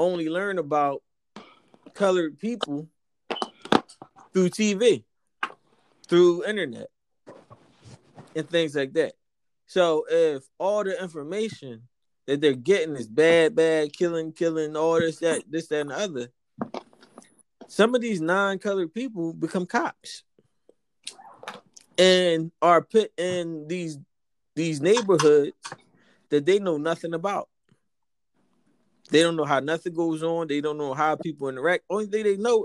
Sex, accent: male, American